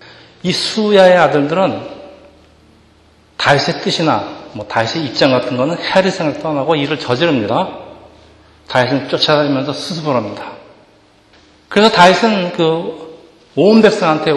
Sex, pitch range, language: male, 140-180 Hz, Korean